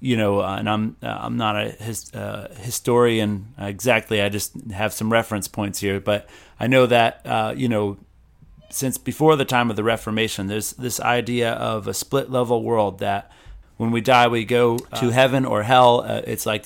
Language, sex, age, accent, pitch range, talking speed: English, male, 30-49, American, 105-120 Hz, 200 wpm